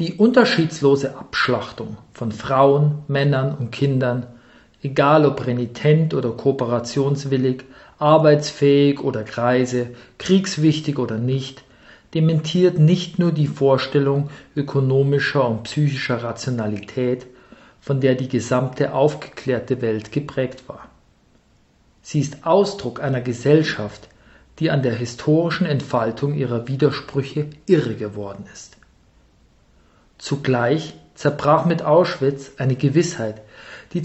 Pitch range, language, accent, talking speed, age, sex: 125-160 Hz, German, German, 100 wpm, 50-69, male